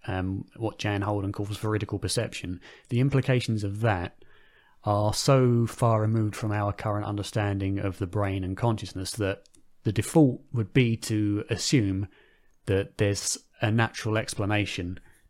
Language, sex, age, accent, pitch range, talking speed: English, male, 30-49, British, 100-115 Hz, 140 wpm